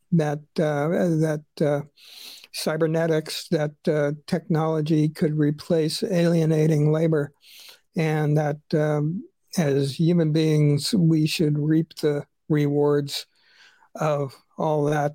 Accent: American